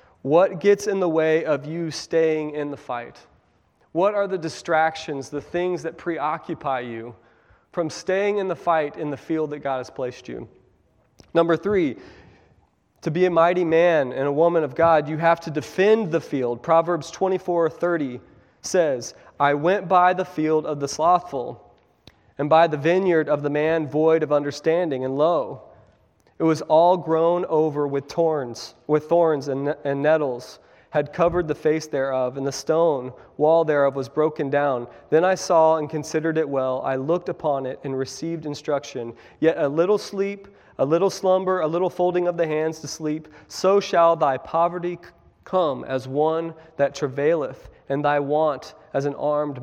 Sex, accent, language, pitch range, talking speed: male, American, English, 145-170 Hz, 175 wpm